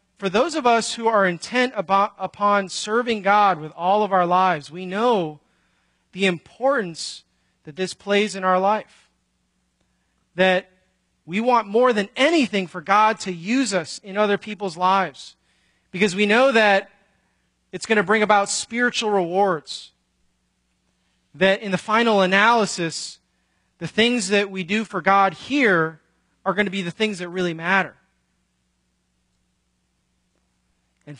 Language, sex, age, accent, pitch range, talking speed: English, male, 30-49, American, 135-210 Hz, 140 wpm